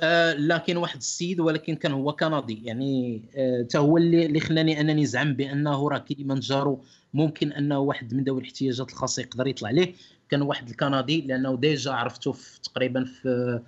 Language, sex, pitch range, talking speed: Arabic, male, 130-155 Hz, 160 wpm